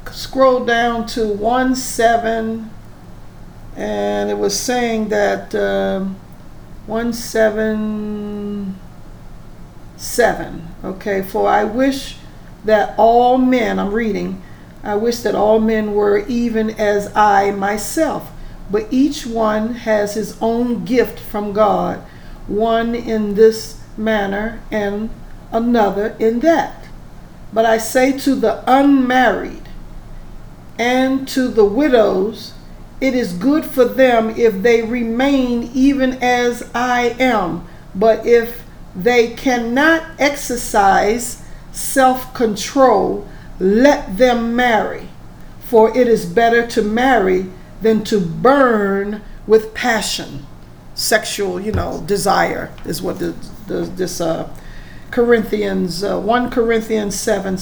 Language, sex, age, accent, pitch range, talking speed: English, female, 50-69, American, 205-245 Hz, 110 wpm